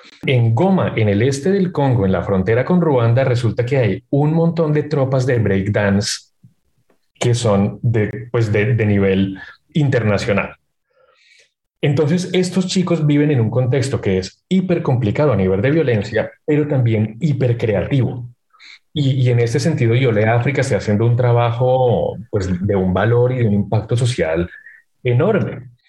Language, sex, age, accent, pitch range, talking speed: Spanish, male, 30-49, Colombian, 105-135 Hz, 155 wpm